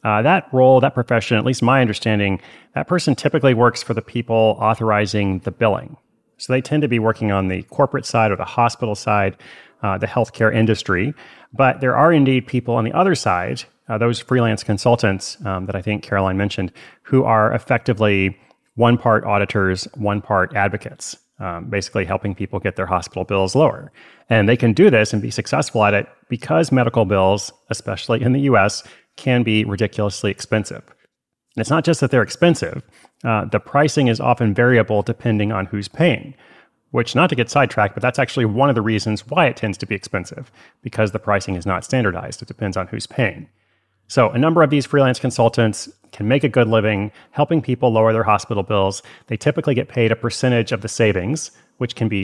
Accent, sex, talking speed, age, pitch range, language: American, male, 195 wpm, 30-49, 105-130 Hz, English